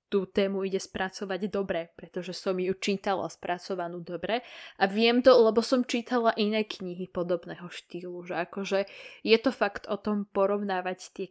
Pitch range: 180-210 Hz